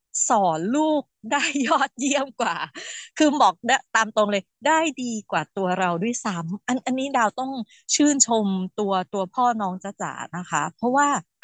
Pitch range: 190-255 Hz